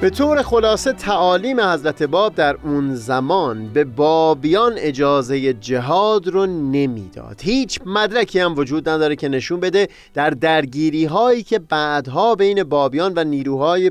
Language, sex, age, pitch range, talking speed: Persian, male, 30-49, 140-190 Hz, 135 wpm